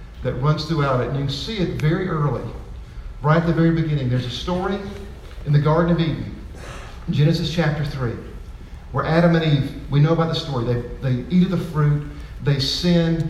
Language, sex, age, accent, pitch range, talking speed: English, male, 50-69, American, 150-205 Hz, 200 wpm